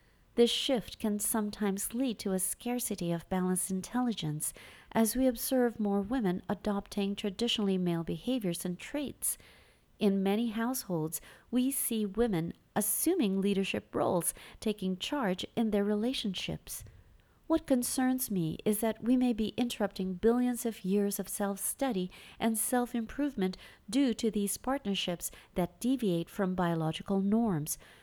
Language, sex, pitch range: English, female, 190-240 Hz